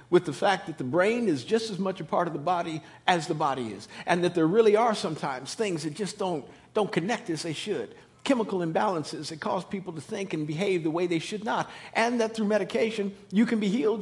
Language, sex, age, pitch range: English, male, 50-69, 210-280 Hz